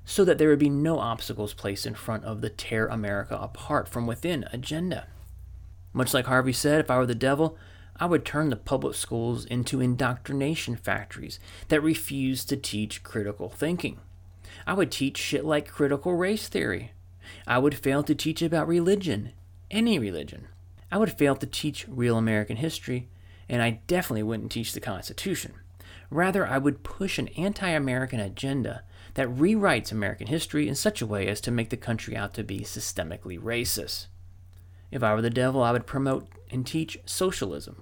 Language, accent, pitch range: English, American, 100-150 Hz